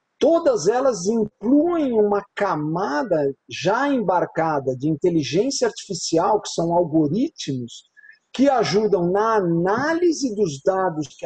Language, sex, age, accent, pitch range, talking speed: Portuguese, male, 50-69, Brazilian, 175-240 Hz, 105 wpm